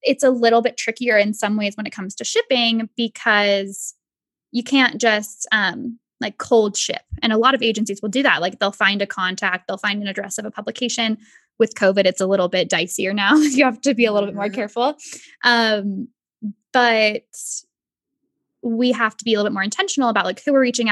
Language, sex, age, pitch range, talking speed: English, female, 10-29, 205-260 Hz, 210 wpm